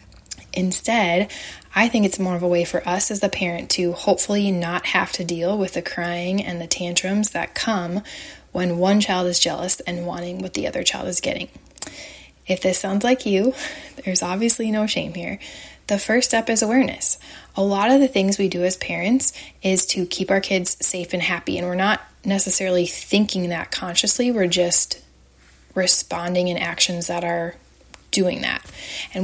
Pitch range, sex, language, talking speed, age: 175-205 Hz, female, English, 185 wpm, 20-39